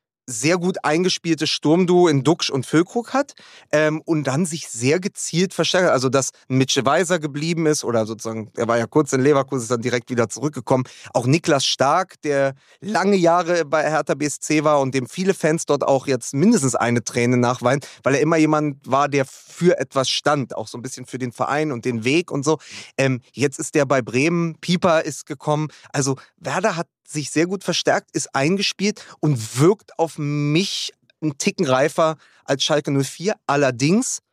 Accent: German